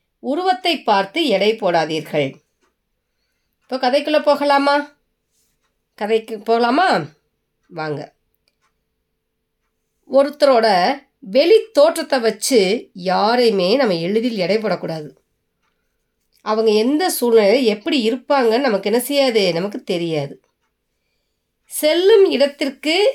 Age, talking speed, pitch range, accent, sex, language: 30-49, 80 wpm, 195-280 Hz, native, female, Tamil